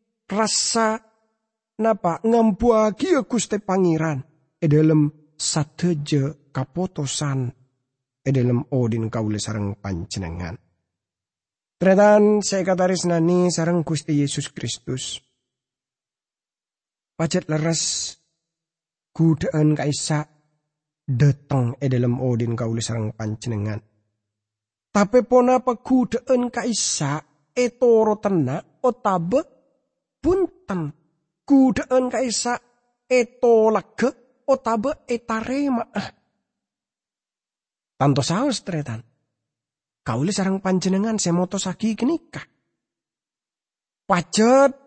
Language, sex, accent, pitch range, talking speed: English, male, Indonesian, 145-225 Hz, 75 wpm